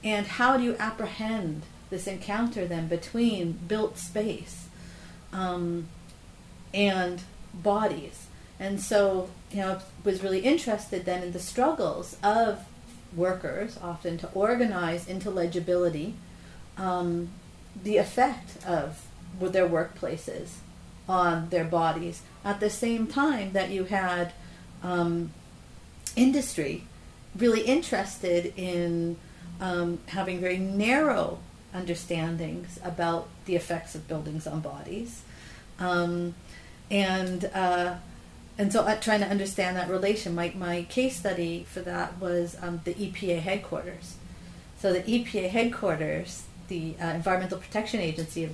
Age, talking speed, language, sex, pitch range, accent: 40-59, 120 wpm, English, female, 175-205 Hz, American